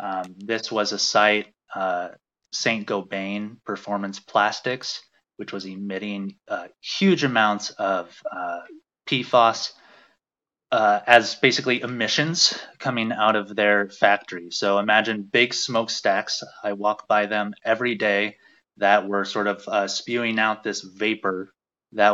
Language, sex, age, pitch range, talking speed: English, male, 30-49, 95-115 Hz, 130 wpm